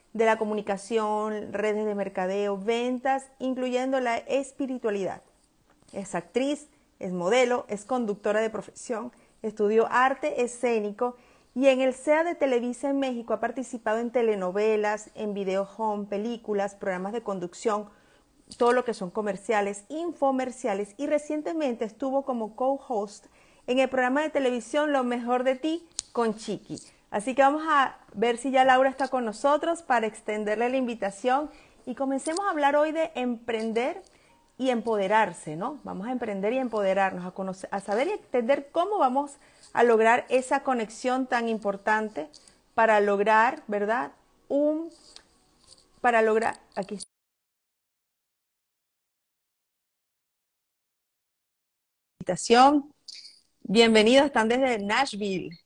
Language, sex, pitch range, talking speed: Spanish, female, 210-270 Hz, 125 wpm